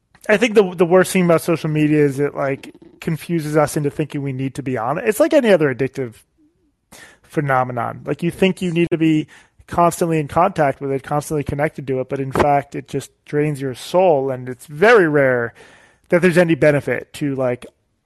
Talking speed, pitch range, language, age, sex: 205 wpm, 130-170 Hz, English, 20-39, male